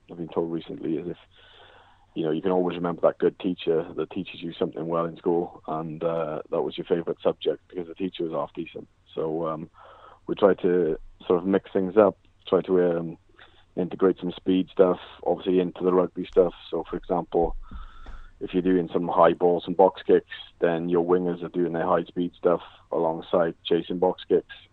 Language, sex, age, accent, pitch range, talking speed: English, male, 30-49, British, 80-90 Hz, 200 wpm